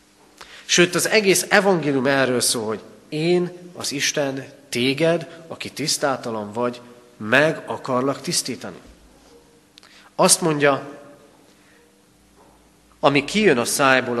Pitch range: 100-165 Hz